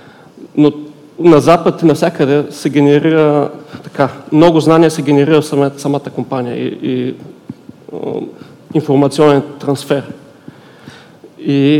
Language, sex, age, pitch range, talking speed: Bulgarian, male, 40-59, 140-160 Hz, 100 wpm